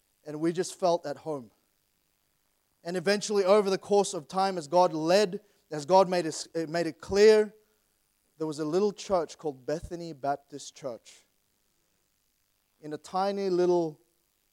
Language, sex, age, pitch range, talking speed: English, male, 30-49, 165-200 Hz, 150 wpm